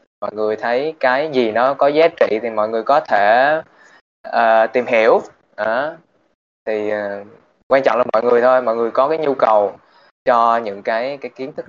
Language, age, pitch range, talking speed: Vietnamese, 20-39, 110-125 Hz, 195 wpm